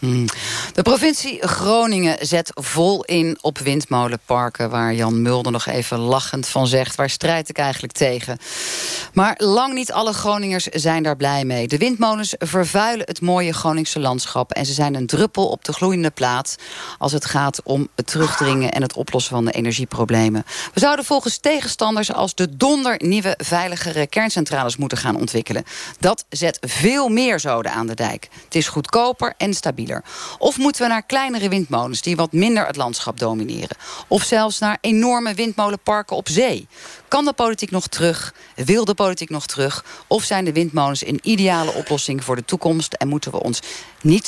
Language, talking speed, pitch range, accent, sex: Dutch, 175 wpm, 130-195 Hz, Dutch, female